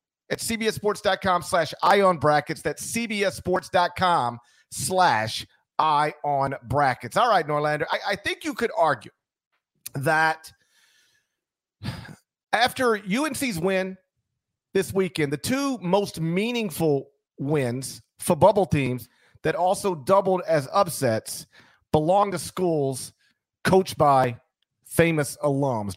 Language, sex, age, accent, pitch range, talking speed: English, male, 40-59, American, 140-185 Hz, 100 wpm